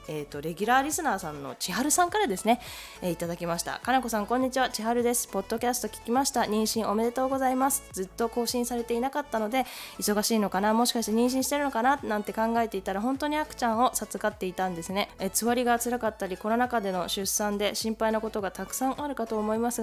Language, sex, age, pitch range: Japanese, female, 20-39, 195-250 Hz